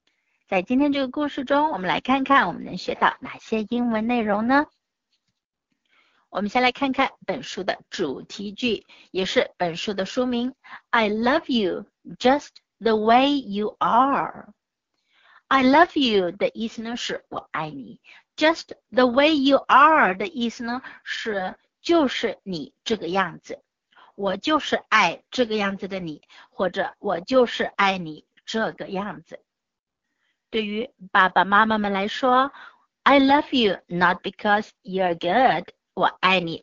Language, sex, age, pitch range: Chinese, female, 60-79, 200-270 Hz